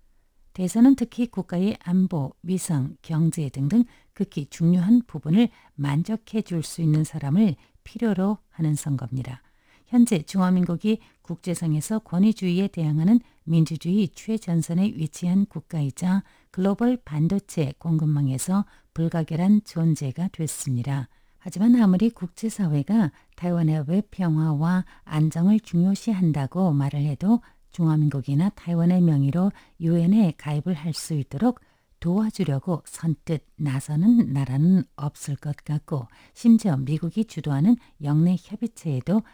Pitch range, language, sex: 150-200 Hz, Korean, female